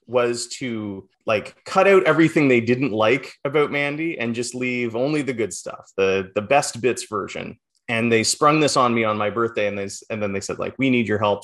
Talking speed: 225 wpm